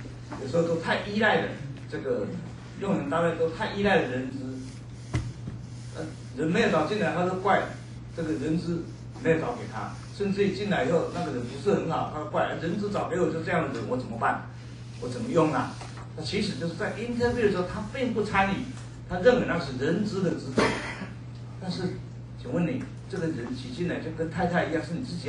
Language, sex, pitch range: Chinese, male, 120-165 Hz